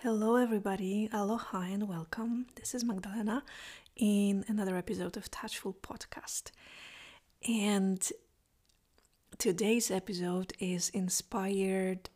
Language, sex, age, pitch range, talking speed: English, female, 30-49, 185-220 Hz, 95 wpm